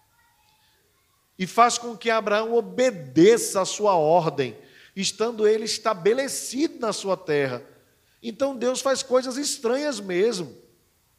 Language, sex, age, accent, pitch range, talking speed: Portuguese, male, 40-59, Brazilian, 200-245 Hz, 115 wpm